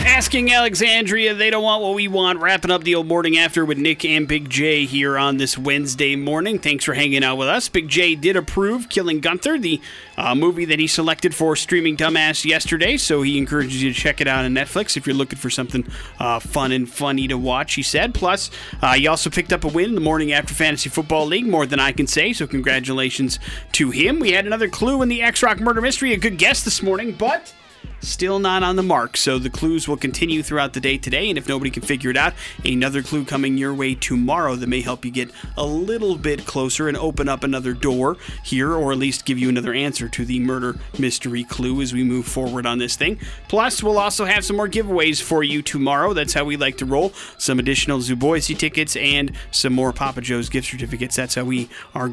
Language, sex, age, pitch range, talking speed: English, male, 30-49, 130-170 Hz, 230 wpm